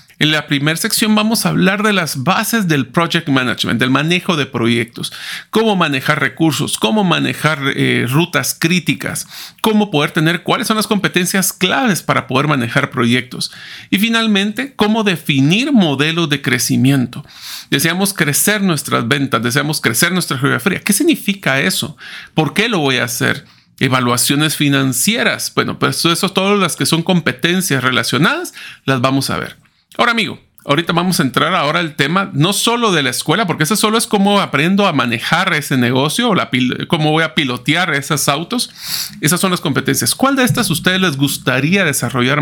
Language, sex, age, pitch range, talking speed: Spanish, male, 40-59, 140-195 Hz, 170 wpm